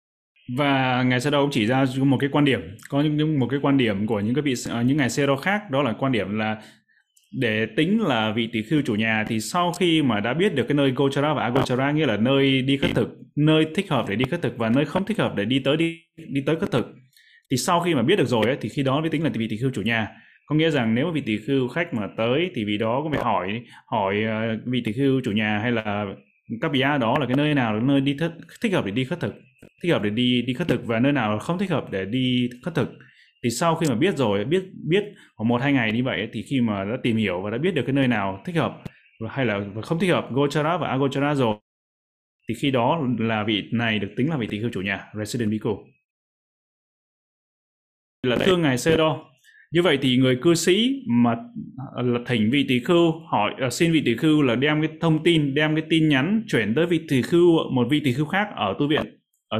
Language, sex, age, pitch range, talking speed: Vietnamese, male, 20-39, 115-155 Hz, 250 wpm